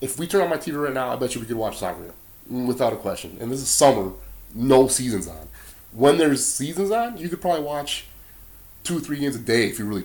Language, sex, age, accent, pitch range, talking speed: English, male, 30-49, American, 100-135 Hz, 250 wpm